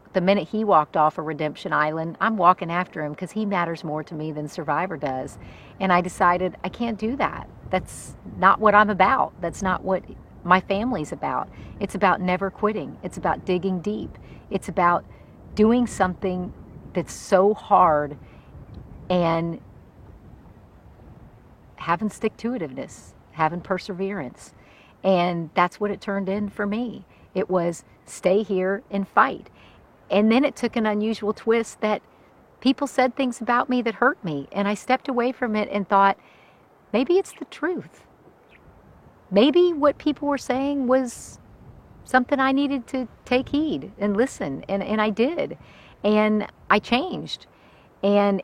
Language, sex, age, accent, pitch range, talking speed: English, female, 50-69, American, 180-230 Hz, 155 wpm